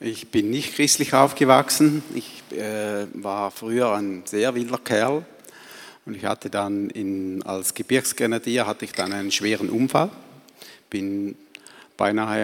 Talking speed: 135 wpm